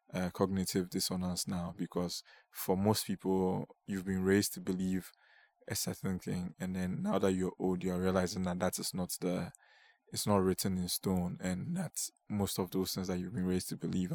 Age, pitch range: 20-39, 90-95 Hz